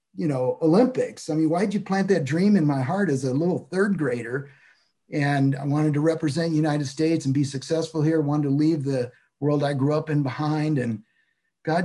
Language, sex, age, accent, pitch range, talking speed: English, male, 50-69, American, 140-175 Hz, 220 wpm